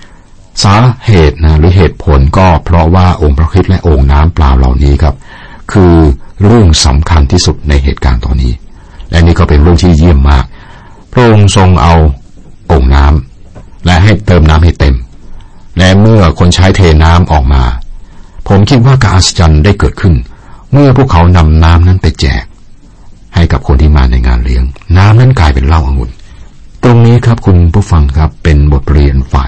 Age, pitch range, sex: 60-79, 70-95 Hz, male